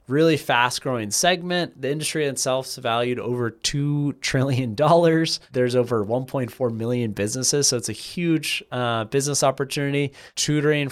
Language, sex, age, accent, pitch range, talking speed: English, male, 20-39, American, 115-145 Hz, 135 wpm